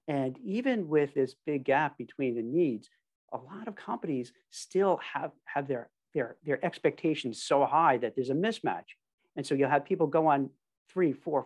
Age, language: 50-69, English